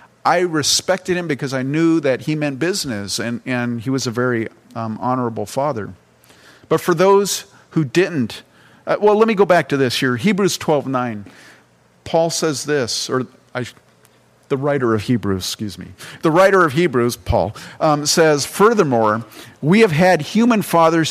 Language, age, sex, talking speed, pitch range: English, 50-69, male, 165 wpm, 130-170 Hz